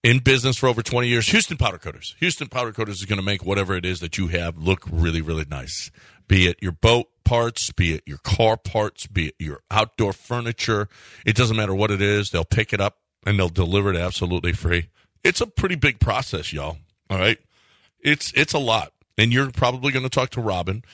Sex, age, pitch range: male, 40-59, 95-115 Hz